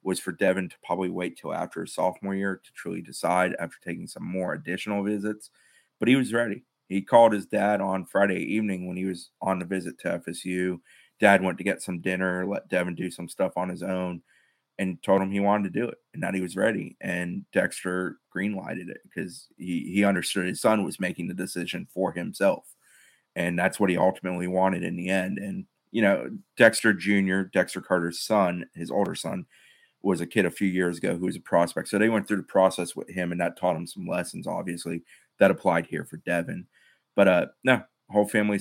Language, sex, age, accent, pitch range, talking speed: English, male, 30-49, American, 90-100 Hz, 215 wpm